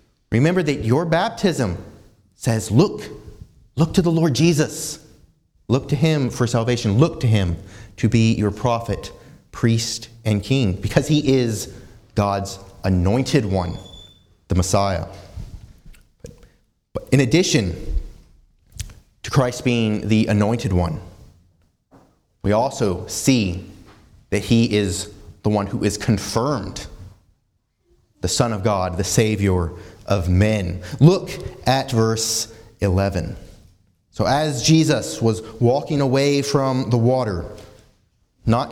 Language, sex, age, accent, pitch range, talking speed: English, male, 30-49, American, 100-125 Hz, 120 wpm